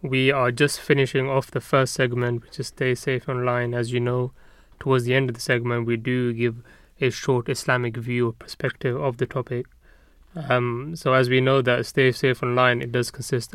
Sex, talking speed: male, 205 wpm